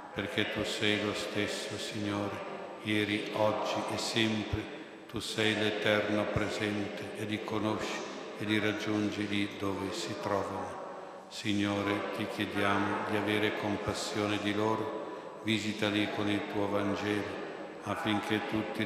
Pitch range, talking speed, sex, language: 100-105 Hz, 125 wpm, male, Italian